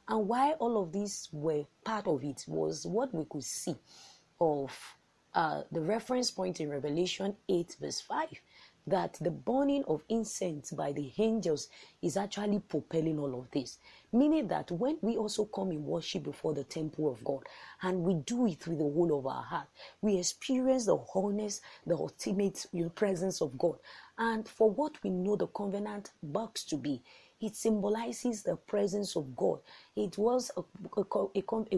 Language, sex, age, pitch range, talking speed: English, female, 30-49, 155-220 Hz, 170 wpm